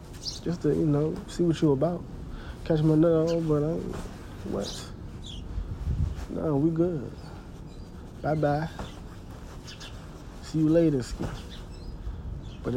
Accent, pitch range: American, 110-160 Hz